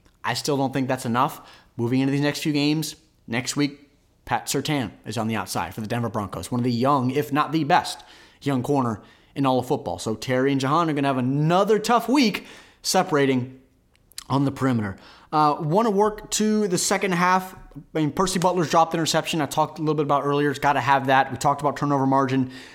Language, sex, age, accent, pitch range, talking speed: English, male, 30-49, American, 135-170 Hz, 225 wpm